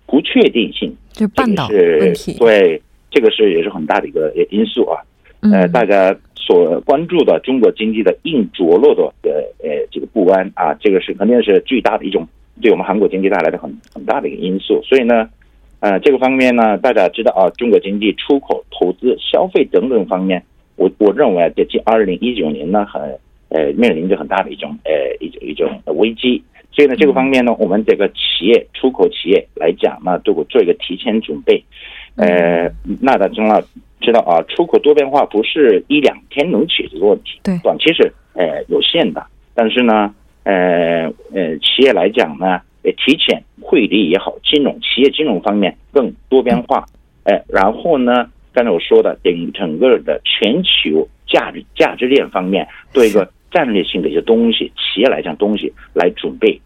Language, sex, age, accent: Korean, male, 50-69, Chinese